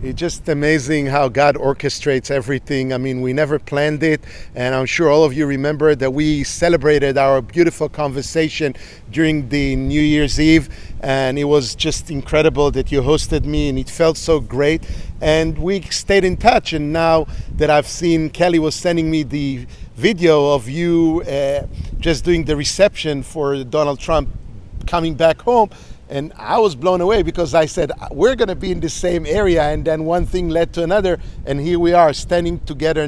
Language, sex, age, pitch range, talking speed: English, male, 50-69, 140-165 Hz, 185 wpm